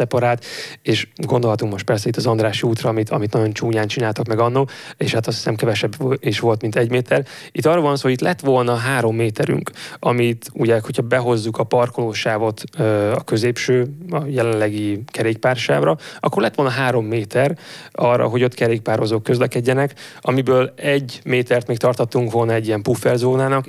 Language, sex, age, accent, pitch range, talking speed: English, male, 20-39, Finnish, 115-130 Hz, 165 wpm